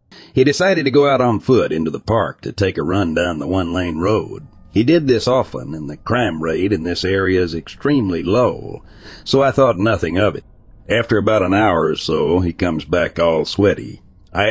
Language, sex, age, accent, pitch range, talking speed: English, male, 60-79, American, 80-110 Hz, 205 wpm